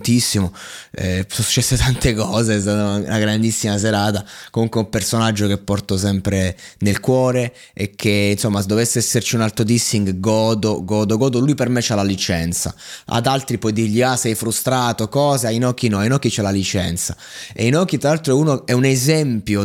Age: 20-39